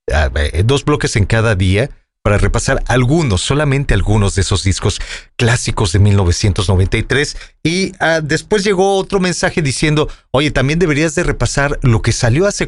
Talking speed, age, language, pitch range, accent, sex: 145 wpm, 40-59, English, 110-145 Hz, Mexican, male